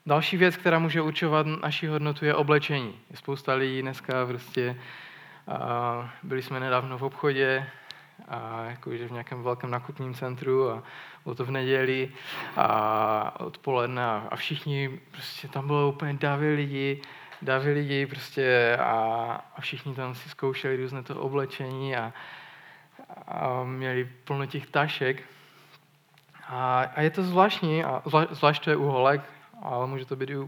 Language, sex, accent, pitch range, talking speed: Czech, male, native, 130-150 Hz, 145 wpm